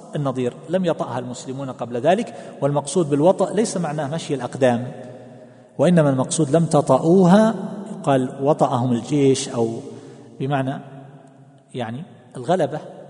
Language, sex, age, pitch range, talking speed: Arabic, male, 40-59, 130-175 Hz, 105 wpm